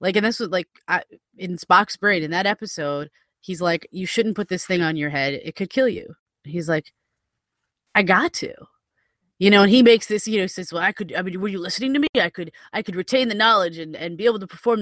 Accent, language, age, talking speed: American, English, 20-39, 255 wpm